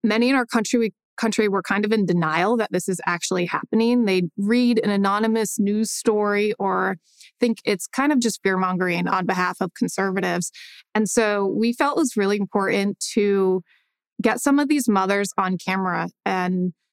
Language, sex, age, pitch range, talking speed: English, female, 20-39, 195-240 Hz, 175 wpm